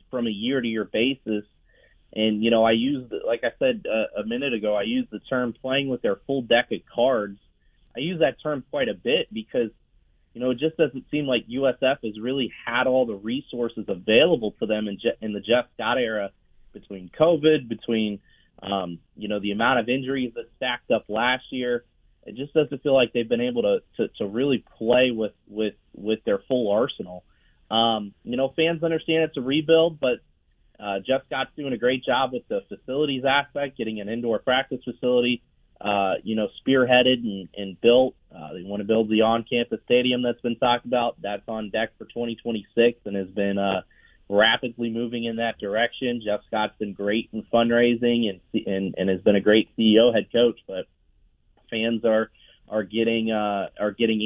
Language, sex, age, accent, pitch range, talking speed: English, male, 30-49, American, 105-125 Hz, 195 wpm